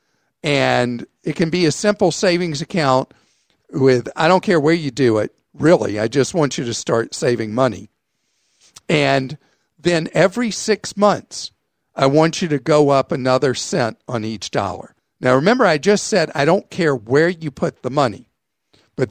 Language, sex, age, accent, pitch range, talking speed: English, male, 50-69, American, 135-180 Hz, 175 wpm